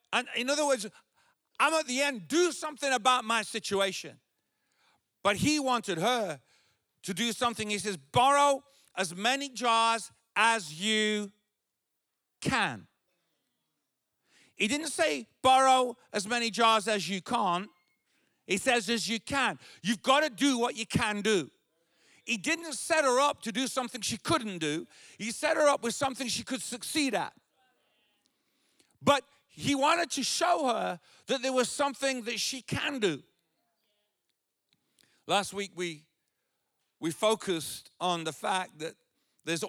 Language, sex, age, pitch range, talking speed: English, male, 50-69, 195-275 Hz, 145 wpm